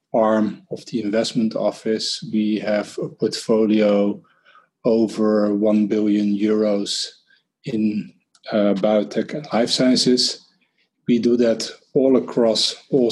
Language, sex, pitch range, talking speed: Swedish, male, 105-115 Hz, 115 wpm